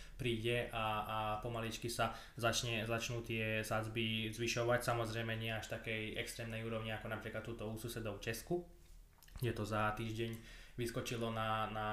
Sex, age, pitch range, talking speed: male, 20-39, 110-120 Hz, 145 wpm